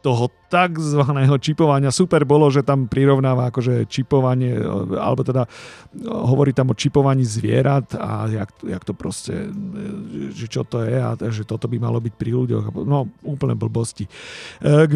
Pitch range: 125-160 Hz